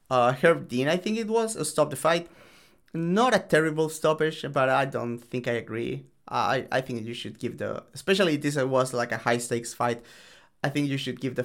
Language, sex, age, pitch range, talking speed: English, male, 30-49, 120-145 Hz, 220 wpm